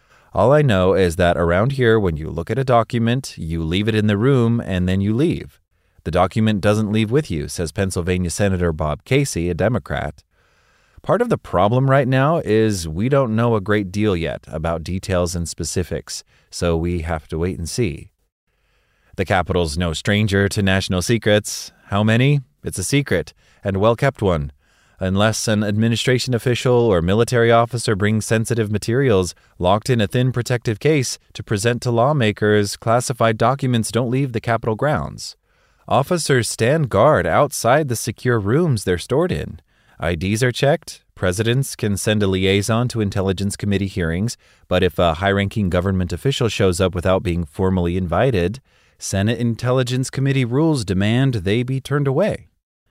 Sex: male